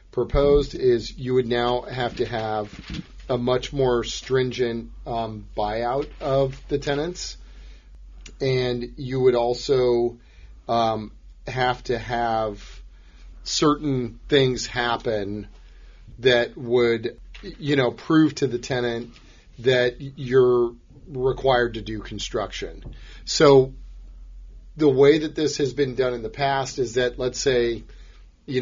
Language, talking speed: English, 120 wpm